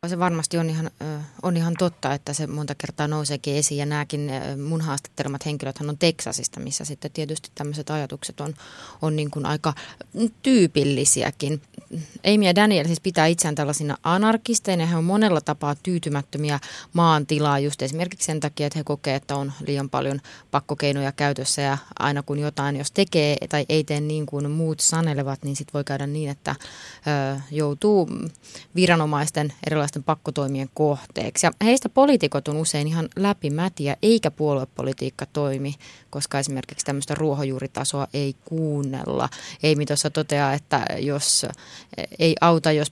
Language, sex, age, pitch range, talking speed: Finnish, female, 20-39, 140-165 Hz, 150 wpm